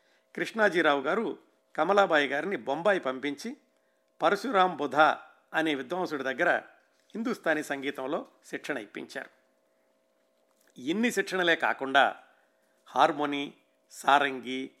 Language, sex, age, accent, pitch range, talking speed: Telugu, male, 50-69, native, 135-185 Hz, 75 wpm